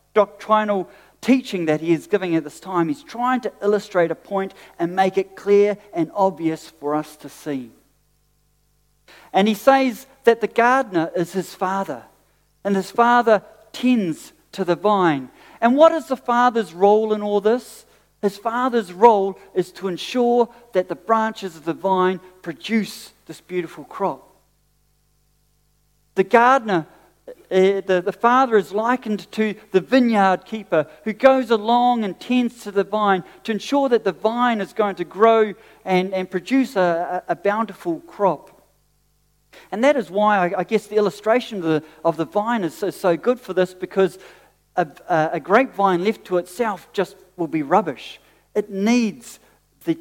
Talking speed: 165 wpm